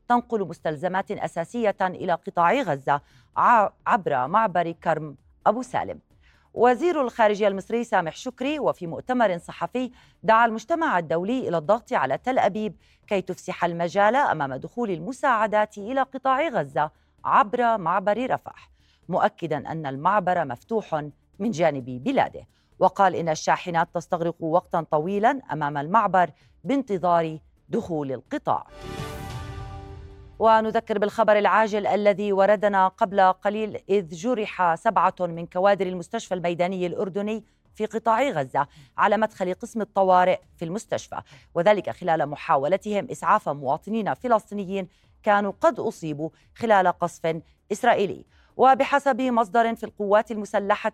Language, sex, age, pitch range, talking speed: Arabic, female, 30-49, 170-225 Hz, 115 wpm